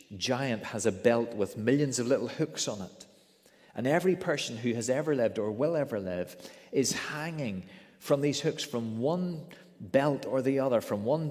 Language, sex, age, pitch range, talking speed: English, male, 30-49, 120-165 Hz, 185 wpm